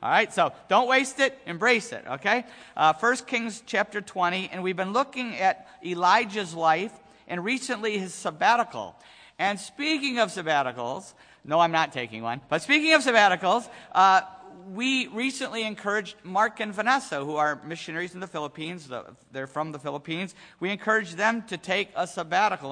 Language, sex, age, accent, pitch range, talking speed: English, male, 50-69, American, 155-210 Hz, 165 wpm